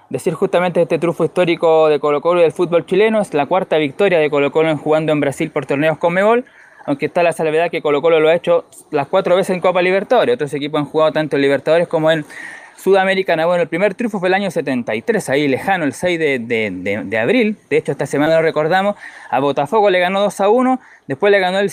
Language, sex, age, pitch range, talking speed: Spanish, male, 20-39, 155-195 Hz, 235 wpm